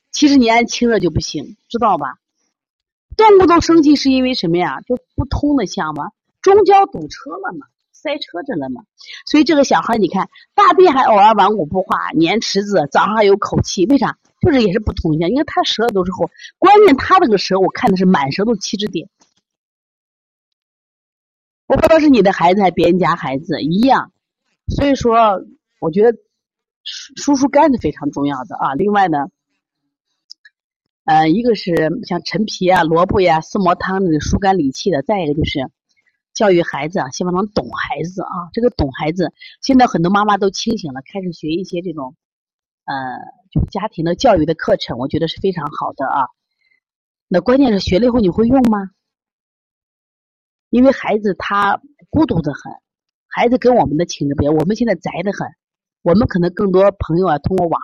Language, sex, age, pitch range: Chinese, female, 30-49, 170-255 Hz